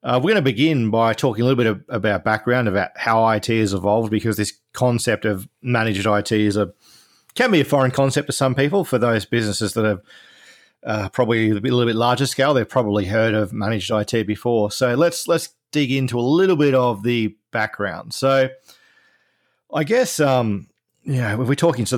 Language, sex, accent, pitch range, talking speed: English, male, Australian, 105-130 Hz, 200 wpm